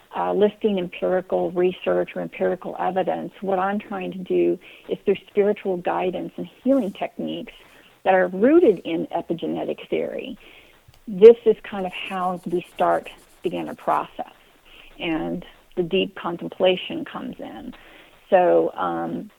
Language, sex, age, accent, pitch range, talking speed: English, female, 40-59, American, 185-215 Hz, 135 wpm